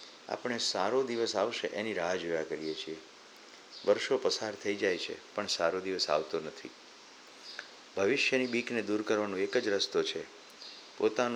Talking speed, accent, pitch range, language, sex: 135 wpm, native, 95-125 Hz, Gujarati, male